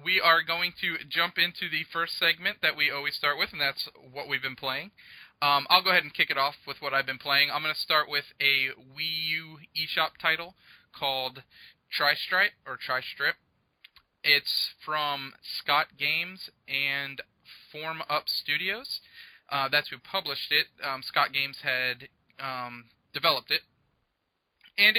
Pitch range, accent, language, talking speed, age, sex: 135-160 Hz, American, English, 165 wpm, 20-39, male